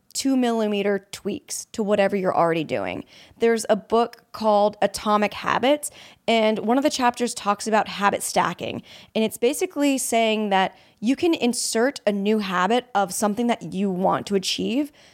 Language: English